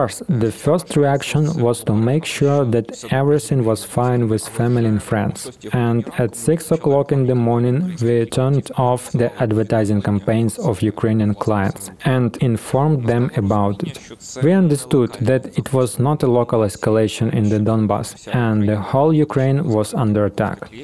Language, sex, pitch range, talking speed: Ukrainian, male, 115-140 Hz, 160 wpm